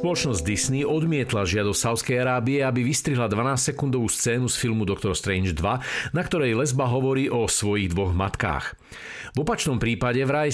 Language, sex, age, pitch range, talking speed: Slovak, male, 50-69, 105-140 Hz, 160 wpm